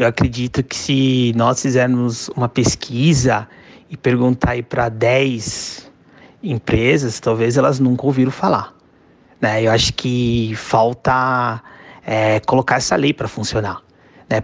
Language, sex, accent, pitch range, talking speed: Portuguese, male, Brazilian, 115-135 Hz, 120 wpm